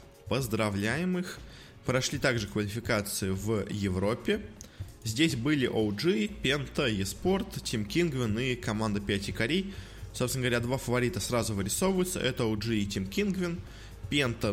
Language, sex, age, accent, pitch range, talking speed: Russian, male, 20-39, native, 100-125 Hz, 130 wpm